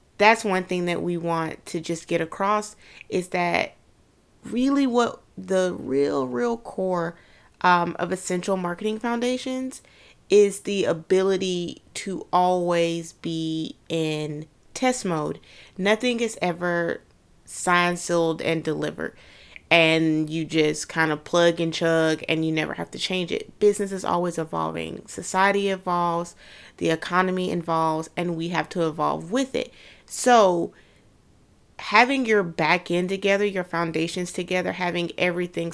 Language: English